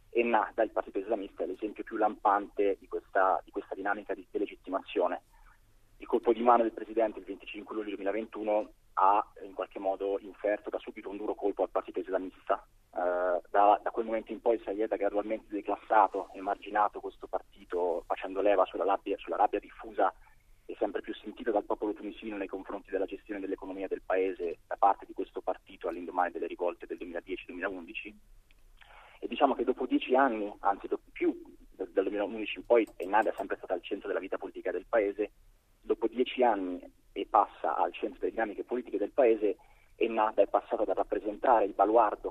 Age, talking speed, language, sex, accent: 20-39, 180 wpm, Italian, male, native